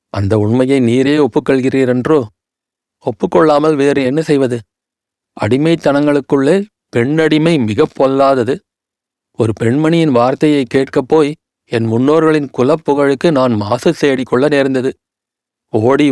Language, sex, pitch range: Tamil, male, 125-150 Hz